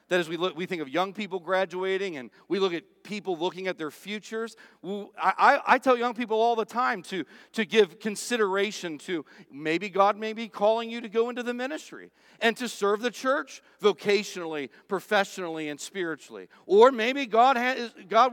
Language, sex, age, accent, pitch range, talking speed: English, male, 50-69, American, 175-235 Hz, 190 wpm